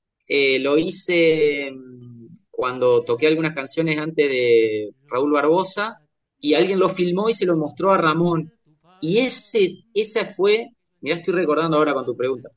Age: 30-49